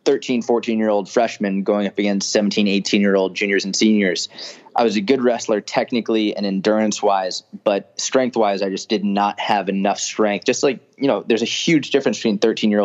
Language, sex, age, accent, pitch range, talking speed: English, male, 20-39, American, 95-110 Hz, 210 wpm